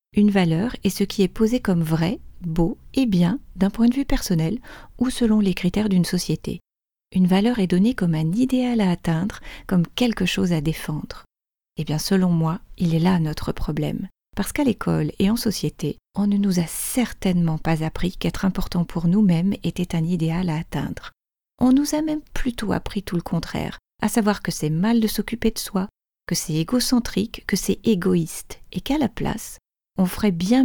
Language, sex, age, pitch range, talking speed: French, female, 40-59, 175-225 Hz, 195 wpm